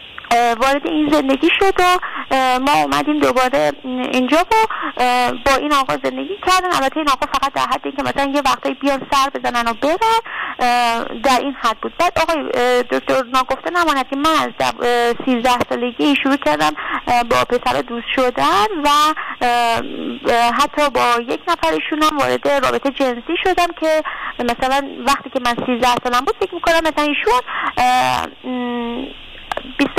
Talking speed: 140 wpm